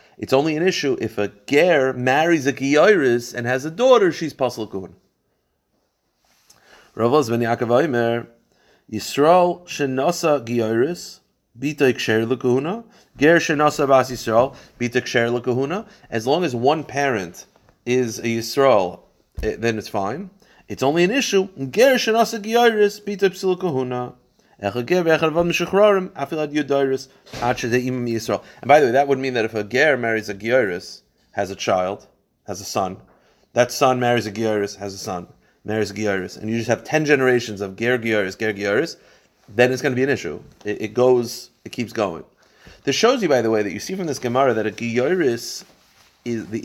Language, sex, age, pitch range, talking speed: English, male, 30-49, 110-150 Hz, 160 wpm